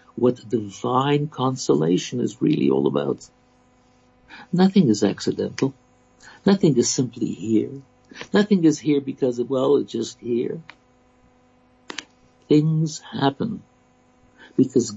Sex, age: male, 60-79